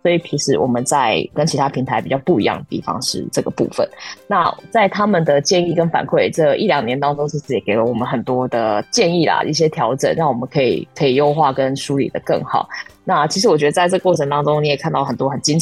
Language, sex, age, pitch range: Chinese, female, 20-39, 130-160 Hz